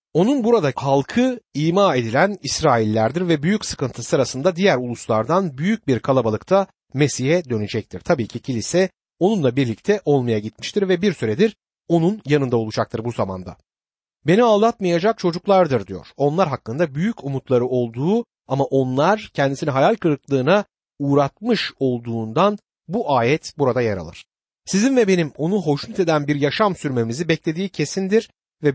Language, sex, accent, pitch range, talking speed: Turkish, male, native, 125-180 Hz, 135 wpm